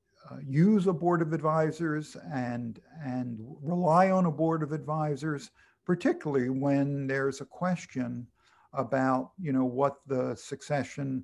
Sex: male